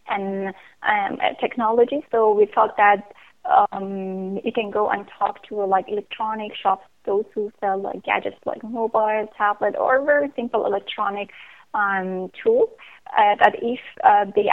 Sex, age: female, 20-39